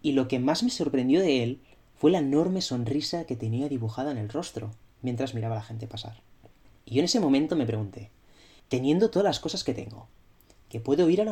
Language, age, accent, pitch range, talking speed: Spanish, 20-39, Spanish, 110-150 Hz, 225 wpm